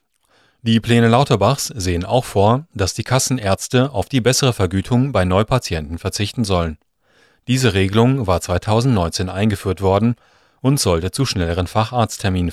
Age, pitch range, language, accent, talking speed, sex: 40-59, 95-125 Hz, German, German, 135 wpm, male